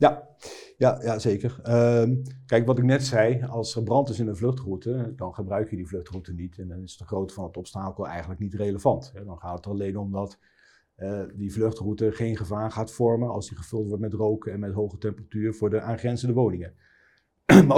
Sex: male